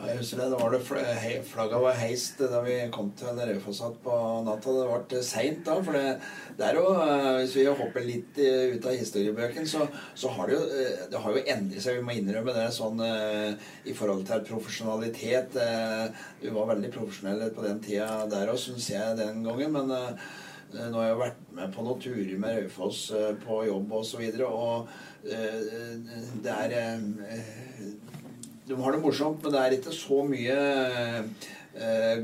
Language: English